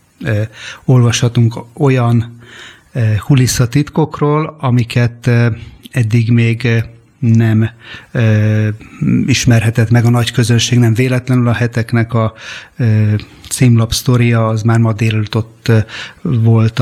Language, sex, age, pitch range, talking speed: Hungarian, male, 30-49, 110-125 Hz, 90 wpm